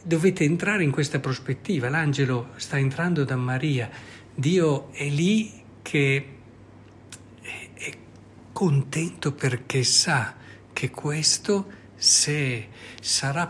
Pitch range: 115-150 Hz